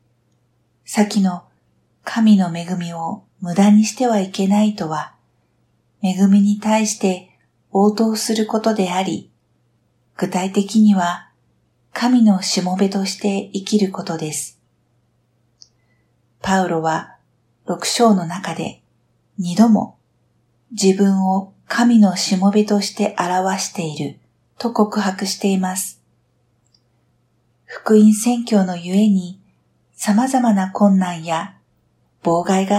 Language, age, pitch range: Japanese, 50-69, 165-205 Hz